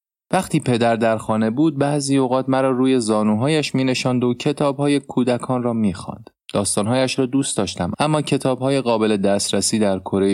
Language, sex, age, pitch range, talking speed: Persian, male, 30-49, 100-135 Hz, 150 wpm